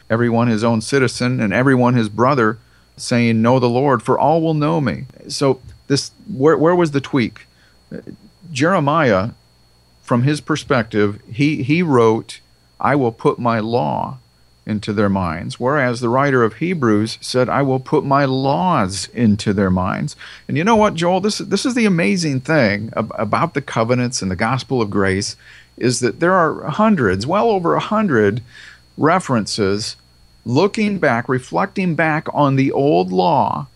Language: English